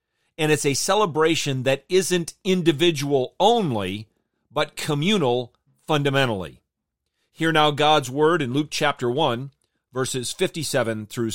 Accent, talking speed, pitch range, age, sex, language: American, 115 wpm, 120-155 Hz, 40-59, male, English